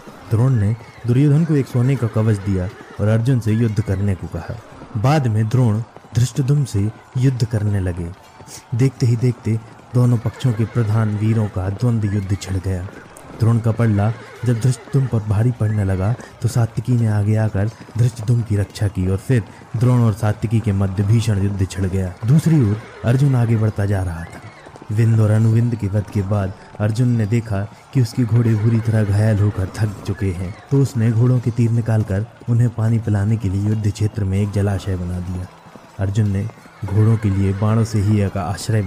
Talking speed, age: 190 wpm, 20-39